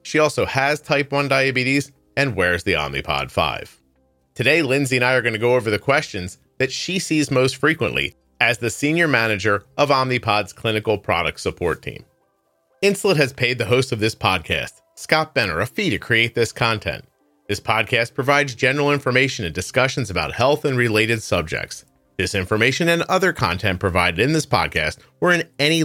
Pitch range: 95-140 Hz